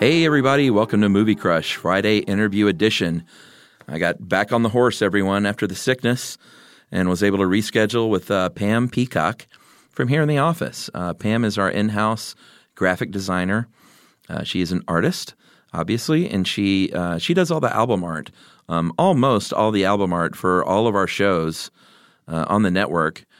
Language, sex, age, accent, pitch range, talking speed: English, male, 40-59, American, 90-110 Hz, 180 wpm